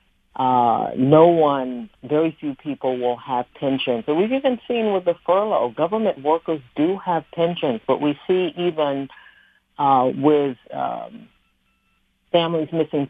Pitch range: 130-155 Hz